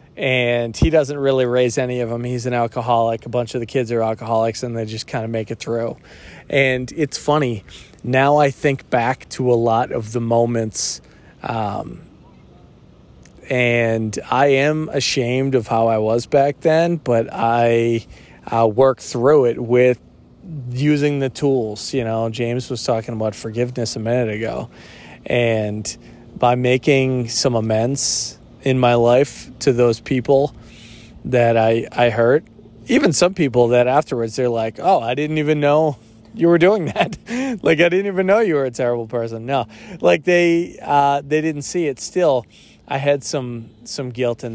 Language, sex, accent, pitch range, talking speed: English, male, American, 115-140 Hz, 170 wpm